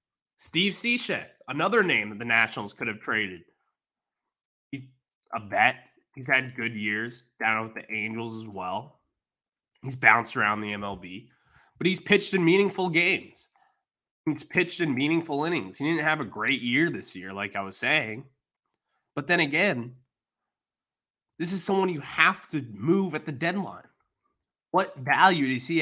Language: English